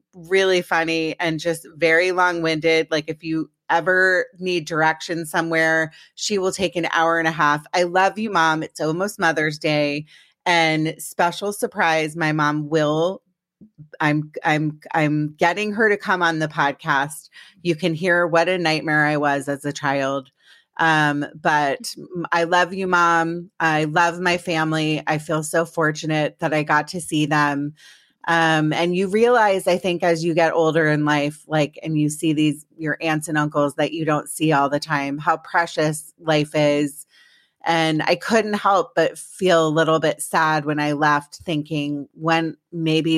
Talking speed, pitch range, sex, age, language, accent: 175 wpm, 150-175 Hz, female, 30-49, English, American